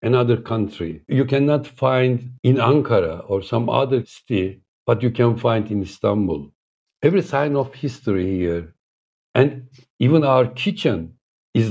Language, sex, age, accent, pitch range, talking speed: English, male, 60-79, Turkish, 110-140 Hz, 140 wpm